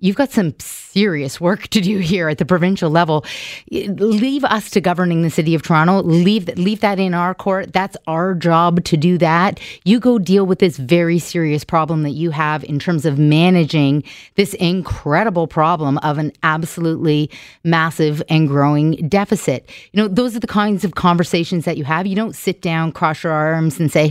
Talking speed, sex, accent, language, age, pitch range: 190 wpm, female, American, English, 30-49, 155-195 Hz